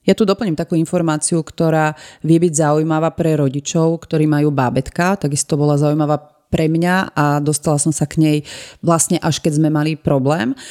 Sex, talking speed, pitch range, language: female, 175 wpm, 155-180 Hz, Slovak